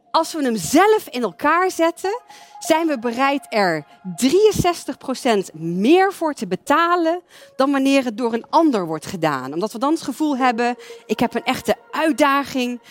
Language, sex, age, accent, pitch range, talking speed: Dutch, female, 40-59, Dutch, 195-285 Hz, 165 wpm